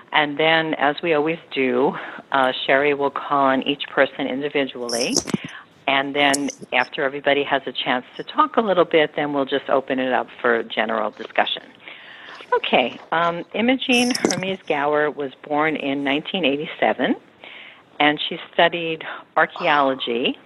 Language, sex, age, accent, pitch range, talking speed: English, female, 50-69, American, 135-160 Hz, 140 wpm